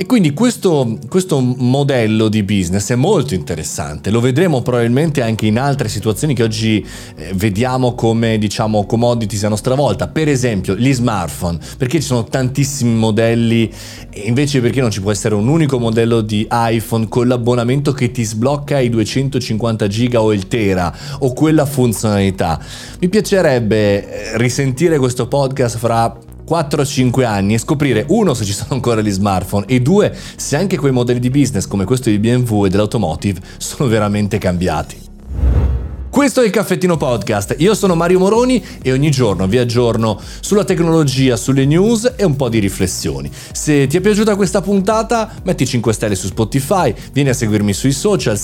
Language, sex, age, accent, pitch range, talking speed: Italian, male, 30-49, native, 105-145 Hz, 165 wpm